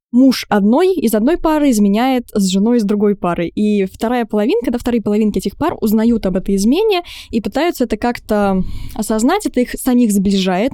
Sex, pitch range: female, 200-250 Hz